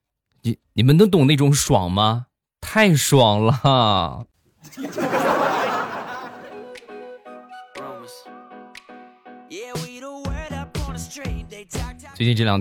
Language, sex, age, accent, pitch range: Chinese, male, 20-39, native, 85-130 Hz